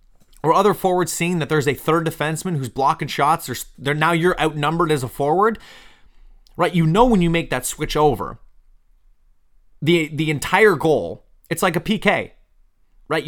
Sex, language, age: male, English, 30-49